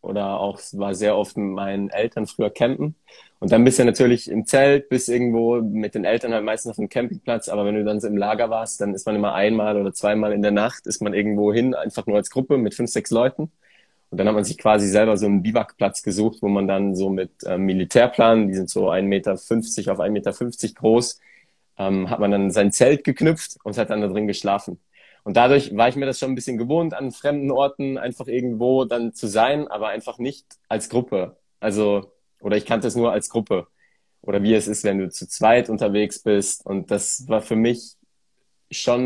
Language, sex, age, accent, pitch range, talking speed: German, male, 20-39, German, 105-120 Hz, 220 wpm